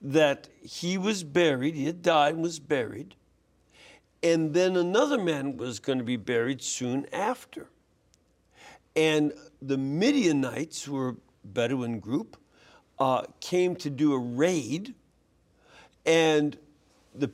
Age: 60-79